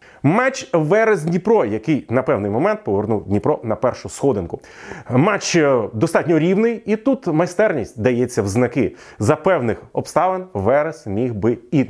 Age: 30-49